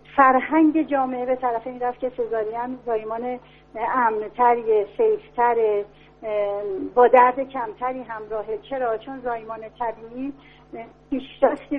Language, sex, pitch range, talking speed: Persian, female, 230-270 Hz, 95 wpm